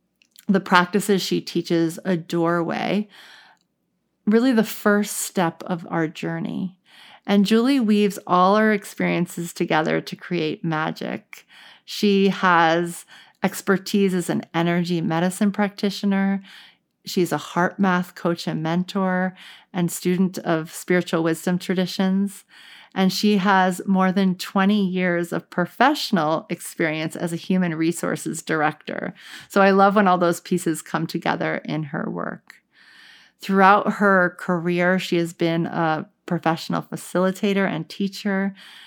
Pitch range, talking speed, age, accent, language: 170-200 Hz, 125 wpm, 40-59, American, English